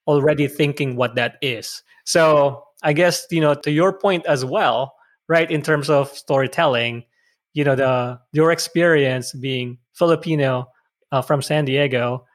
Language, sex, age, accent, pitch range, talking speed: English, male, 20-39, Filipino, 140-165 Hz, 150 wpm